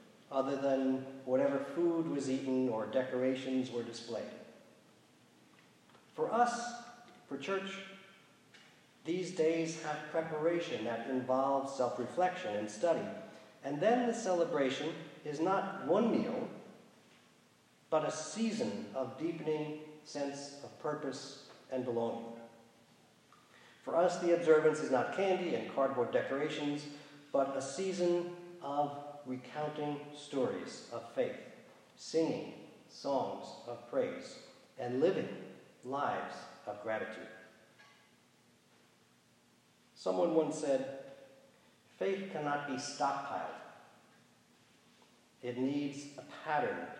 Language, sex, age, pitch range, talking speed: English, male, 50-69, 130-165 Hz, 100 wpm